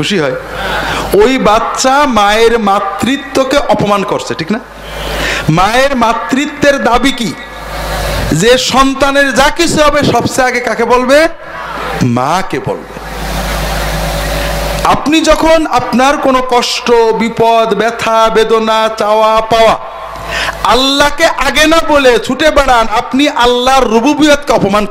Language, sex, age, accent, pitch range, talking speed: Bengali, male, 50-69, native, 210-275 Hz, 30 wpm